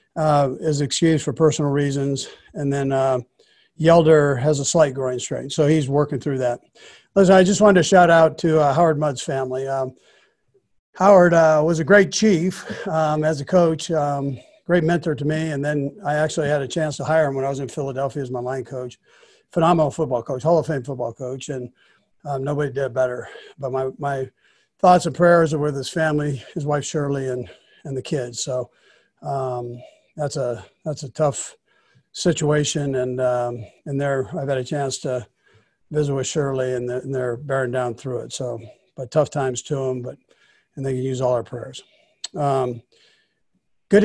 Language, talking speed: English, 195 wpm